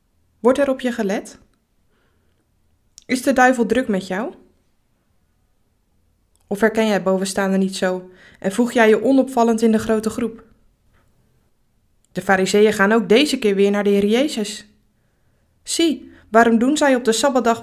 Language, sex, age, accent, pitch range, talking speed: Dutch, female, 20-39, Dutch, 190-235 Hz, 155 wpm